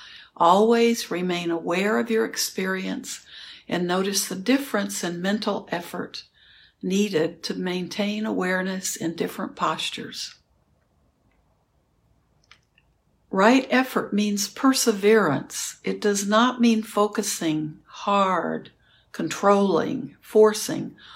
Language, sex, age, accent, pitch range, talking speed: English, female, 60-79, American, 180-225 Hz, 90 wpm